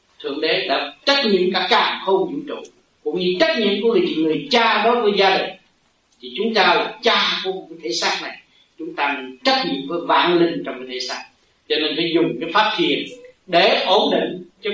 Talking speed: 210 wpm